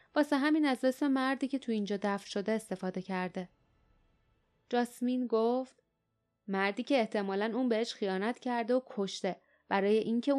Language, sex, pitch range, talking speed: Persian, female, 195-250 Hz, 140 wpm